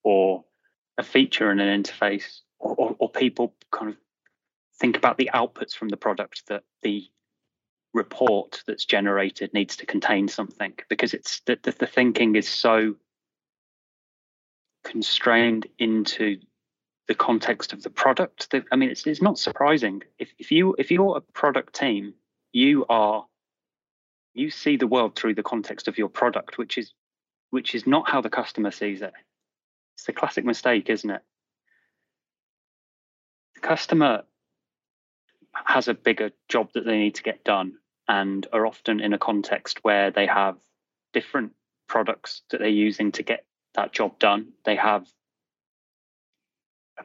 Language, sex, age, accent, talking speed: English, male, 30-49, British, 150 wpm